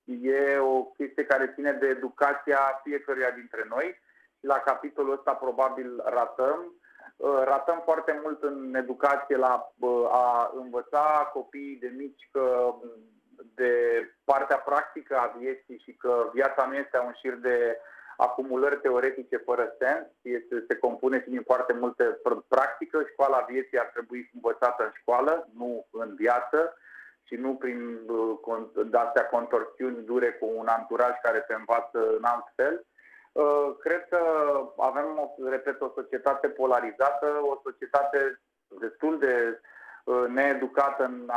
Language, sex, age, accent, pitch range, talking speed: Romanian, male, 30-49, native, 120-140 Hz, 130 wpm